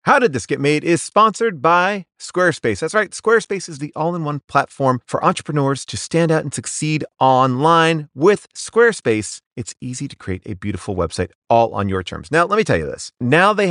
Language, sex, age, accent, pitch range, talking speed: English, male, 30-49, American, 120-170 Hz, 195 wpm